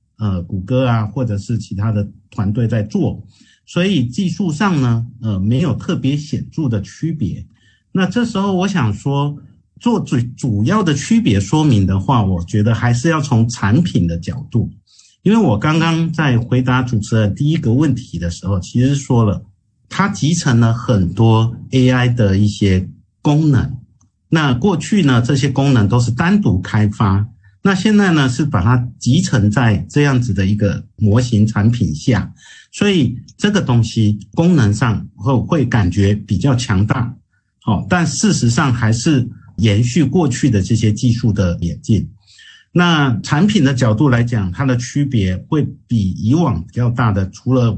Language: Chinese